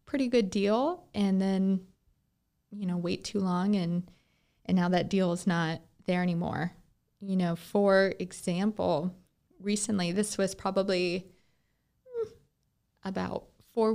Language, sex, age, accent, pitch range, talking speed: English, female, 20-39, American, 185-220 Hz, 125 wpm